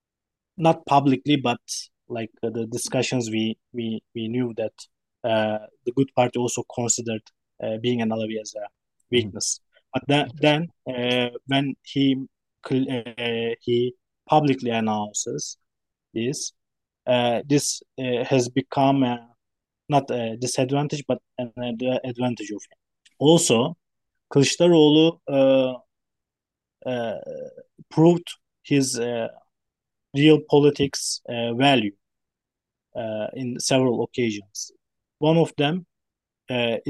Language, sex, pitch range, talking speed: English, male, 115-135 Hz, 110 wpm